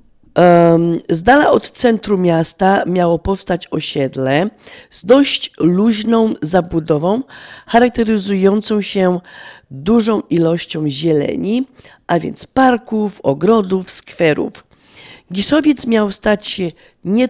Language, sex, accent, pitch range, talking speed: Polish, female, native, 155-210 Hz, 95 wpm